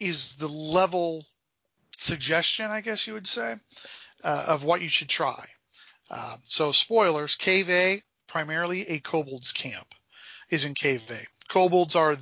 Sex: male